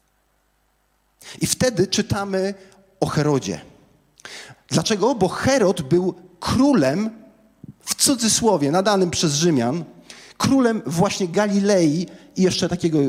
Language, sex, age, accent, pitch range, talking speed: Polish, male, 40-59, native, 135-195 Hz, 95 wpm